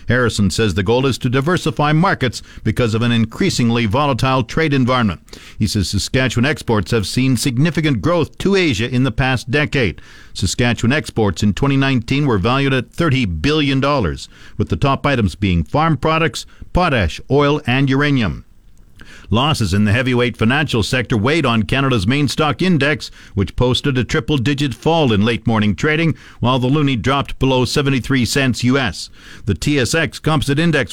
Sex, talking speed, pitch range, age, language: male, 160 wpm, 115-150 Hz, 50-69, English